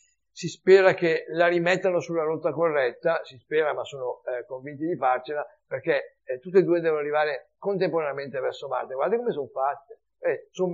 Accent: native